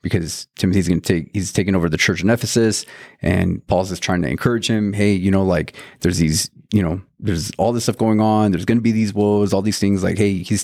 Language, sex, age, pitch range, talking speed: English, male, 30-49, 100-115 Hz, 255 wpm